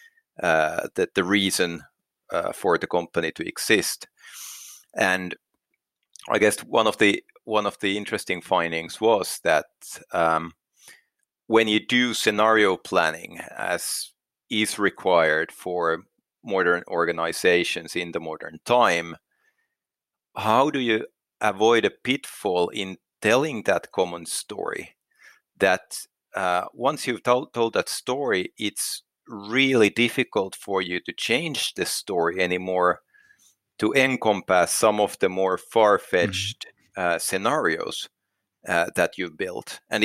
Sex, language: male, English